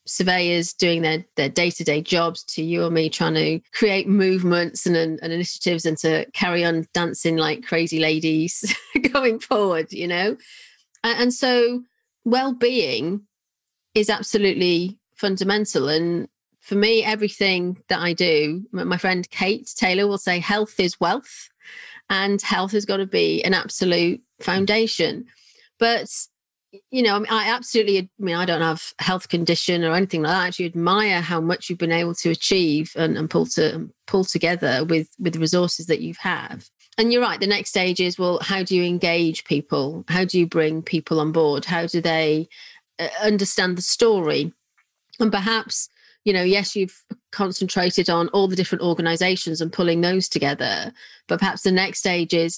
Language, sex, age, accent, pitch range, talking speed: English, female, 40-59, British, 170-210 Hz, 170 wpm